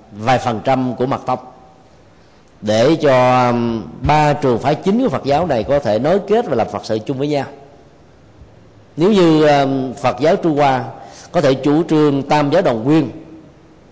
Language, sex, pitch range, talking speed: Vietnamese, male, 120-155 Hz, 175 wpm